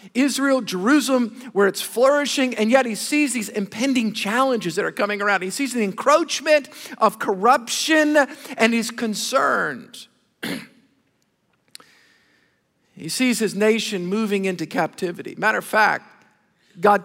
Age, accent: 50-69, American